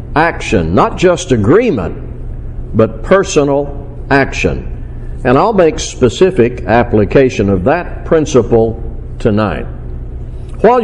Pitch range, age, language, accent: 105-155 Hz, 60-79, English, American